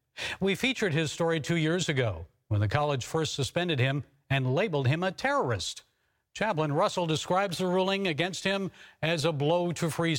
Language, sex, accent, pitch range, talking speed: English, male, American, 140-190 Hz, 175 wpm